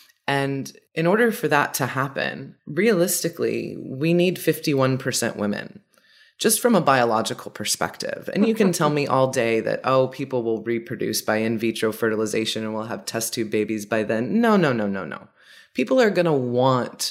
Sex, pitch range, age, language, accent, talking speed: female, 115-170 Hz, 20-39, English, American, 180 wpm